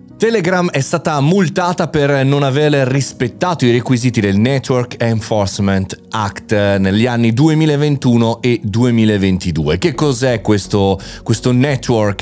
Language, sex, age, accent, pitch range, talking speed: Italian, male, 30-49, native, 105-140 Hz, 120 wpm